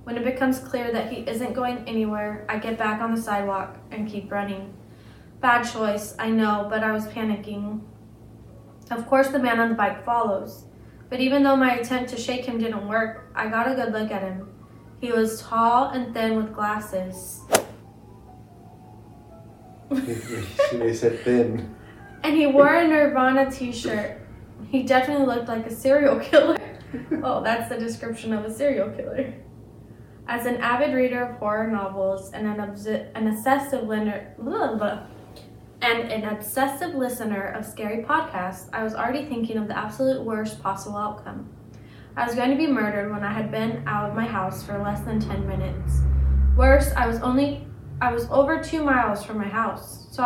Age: 20-39